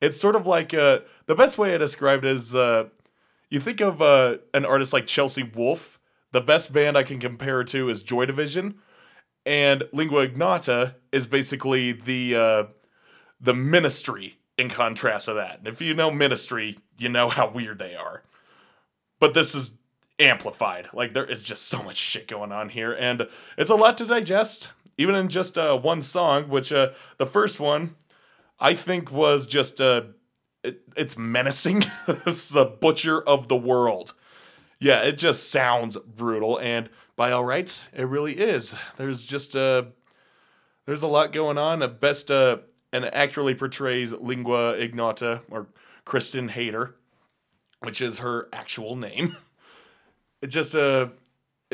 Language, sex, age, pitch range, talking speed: English, male, 20-39, 120-155 Hz, 160 wpm